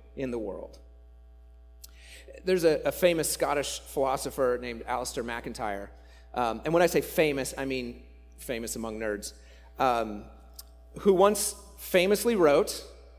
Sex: male